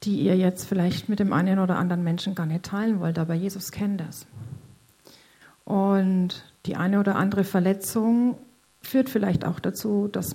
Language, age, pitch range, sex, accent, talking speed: German, 50-69, 180-220 Hz, female, German, 170 wpm